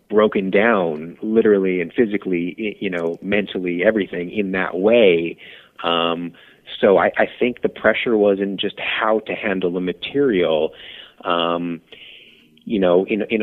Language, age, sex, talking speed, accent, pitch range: English, 30-49, male, 145 wpm, American, 85-100 Hz